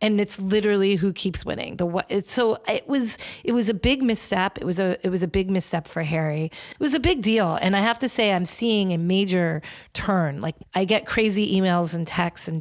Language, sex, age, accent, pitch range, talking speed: English, female, 40-59, American, 165-210 Hz, 225 wpm